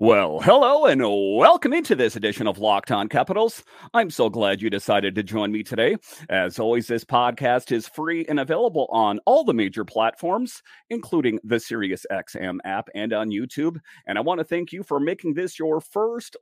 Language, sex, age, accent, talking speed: English, male, 40-59, American, 185 wpm